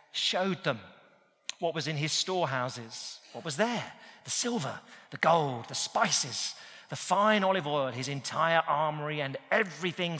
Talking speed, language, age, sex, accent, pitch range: 145 wpm, English, 40-59, male, British, 140-190 Hz